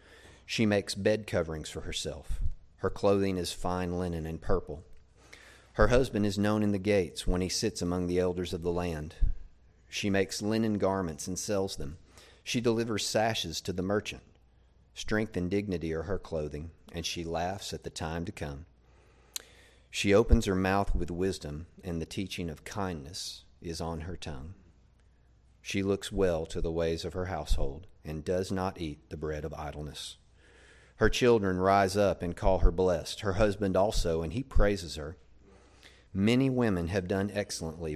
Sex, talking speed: male, 170 wpm